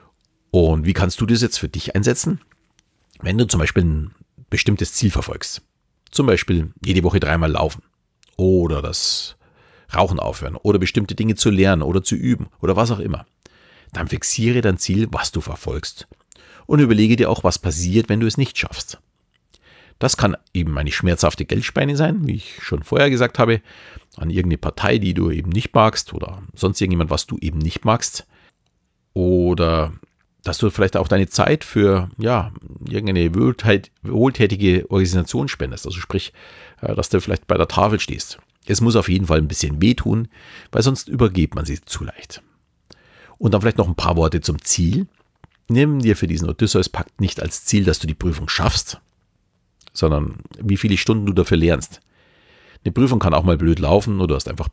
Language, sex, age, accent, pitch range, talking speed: German, male, 40-59, German, 85-110 Hz, 180 wpm